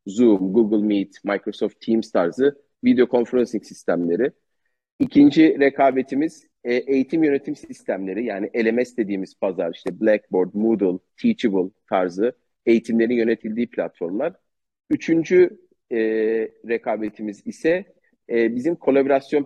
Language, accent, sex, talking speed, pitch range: Turkish, native, male, 95 wpm, 115-155 Hz